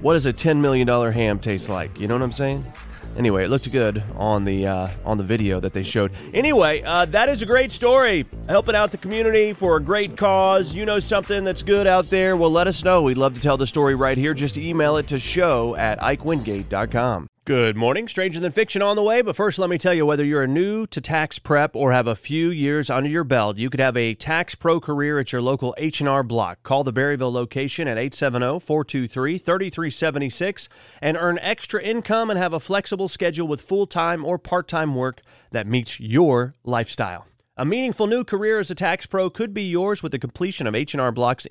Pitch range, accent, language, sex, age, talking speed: 125-180 Hz, American, English, male, 30-49, 215 wpm